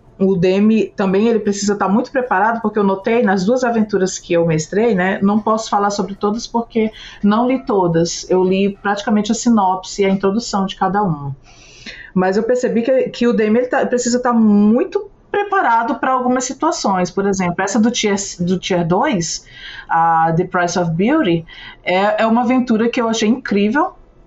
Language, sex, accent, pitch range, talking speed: Portuguese, female, Brazilian, 185-235 Hz, 185 wpm